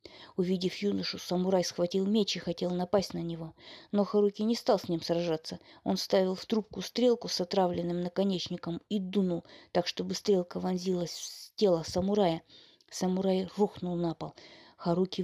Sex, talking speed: female, 155 wpm